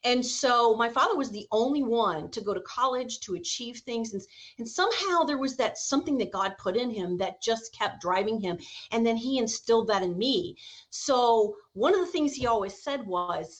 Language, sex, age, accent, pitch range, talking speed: English, female, 30-49, American, 220-275 Hz, 210 wpm